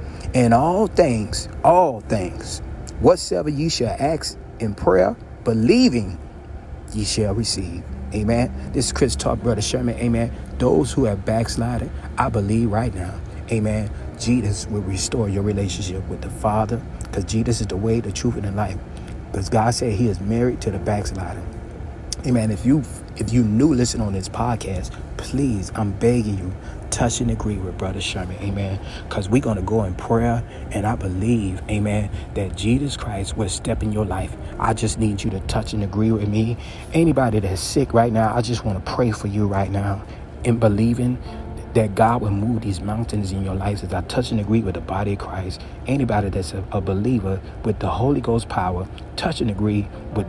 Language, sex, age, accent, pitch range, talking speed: English, male, 30-49, American, 95-115 Hz, 185 wpm